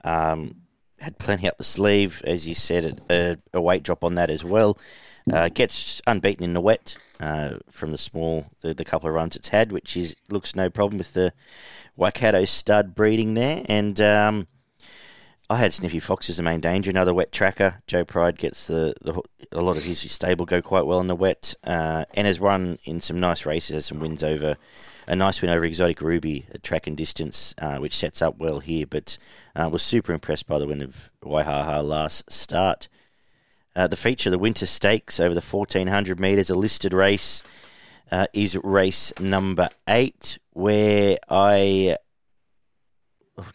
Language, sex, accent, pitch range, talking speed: English, male, Australian, 85-100 Hz, 185 wpm